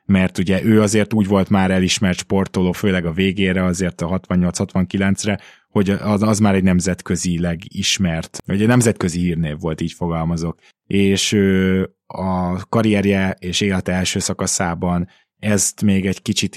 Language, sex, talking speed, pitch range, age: Hungarian, male, 140 wpm, 90-100 Hz, 20-39